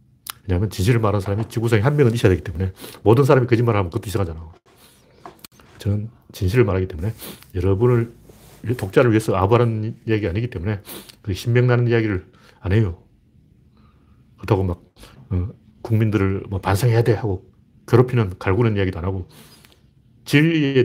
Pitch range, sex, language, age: 105-130 Hz, male, Korean, 40-59